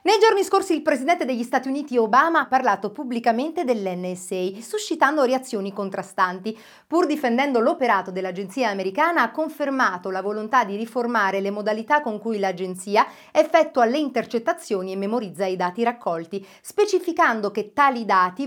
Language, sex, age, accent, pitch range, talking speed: Italian, female, 40-59, native, 205-275 Hz, 145 wpm